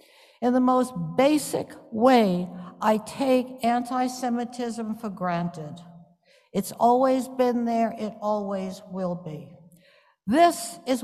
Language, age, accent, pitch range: English, 60-79, American, 180-250 Hz